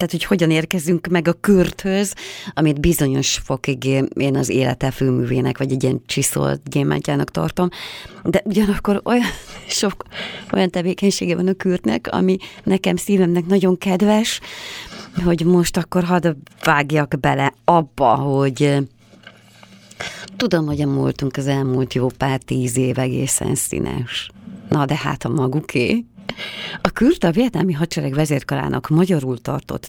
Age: 30-49